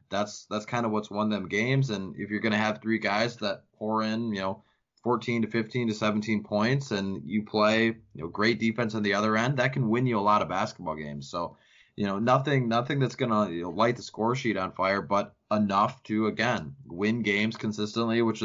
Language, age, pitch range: English, 20-39, 105-125 Hz